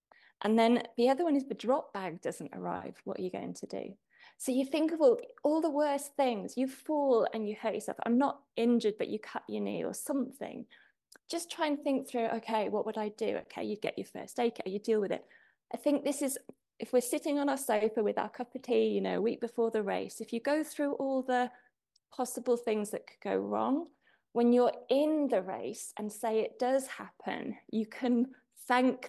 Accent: British